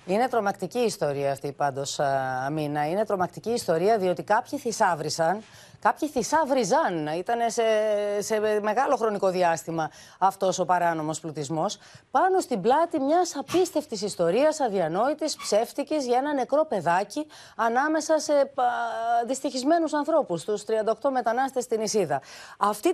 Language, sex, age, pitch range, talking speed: Greek, female, 30-49, 180-270 Hz, 125 wpm